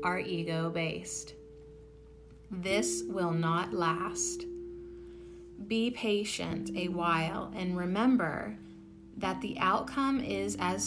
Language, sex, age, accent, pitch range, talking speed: English, female, 30-49, American, 150-215 Hz, 100 wpm